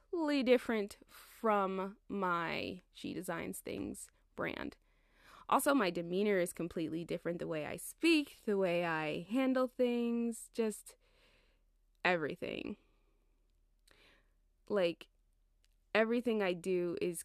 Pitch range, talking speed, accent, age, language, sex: 170-230 Hz, 100 wpm, American, 20-39, English, female